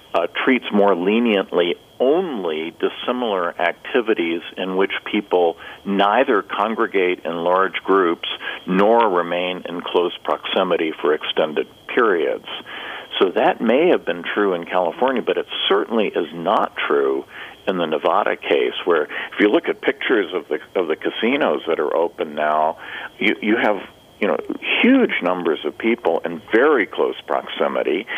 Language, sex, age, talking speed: English, male, 50-69, 145 wpm